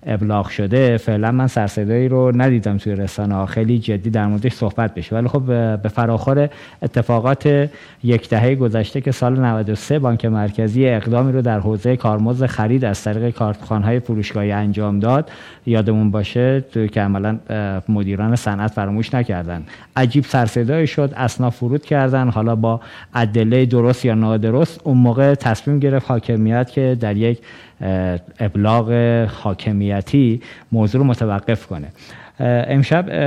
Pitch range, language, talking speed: 110-135 Hz, Persian, 135 wpm